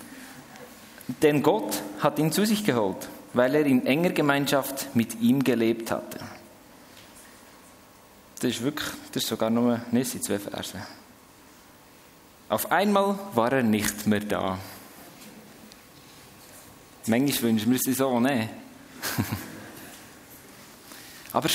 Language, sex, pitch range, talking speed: German, male, 130-185 Hz, 115 wpm